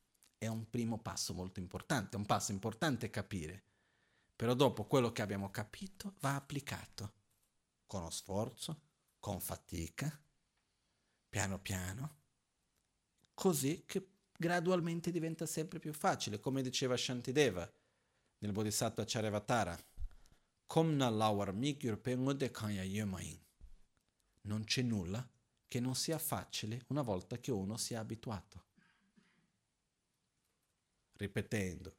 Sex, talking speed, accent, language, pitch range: male, 105 wpm, native, Italian, 100-135 Hz